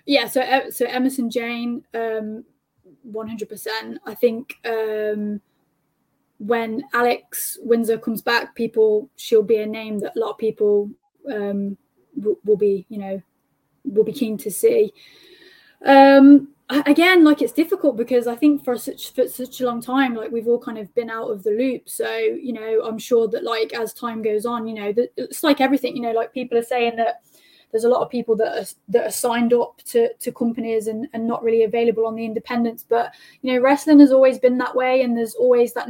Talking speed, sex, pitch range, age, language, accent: 195 wpm, female, 225-255 Hz, 10-29, English, British